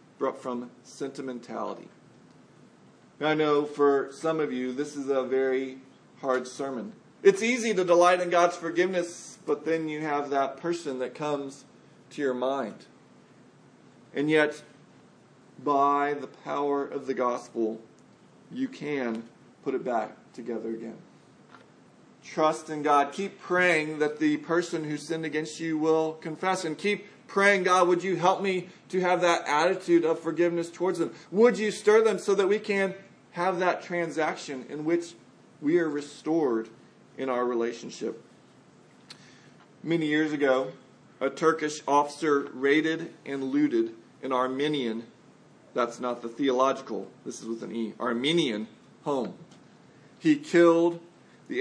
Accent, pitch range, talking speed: American, 135-170 Hz, 140 wpm